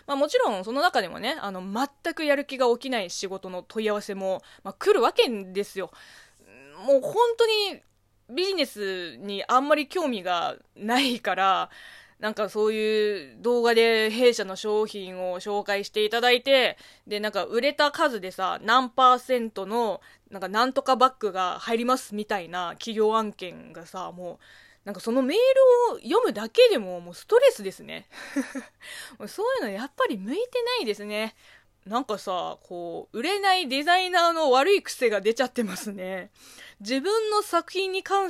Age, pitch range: 20-39, 200-330 Hz